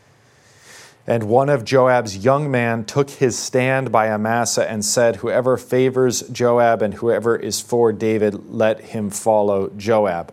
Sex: male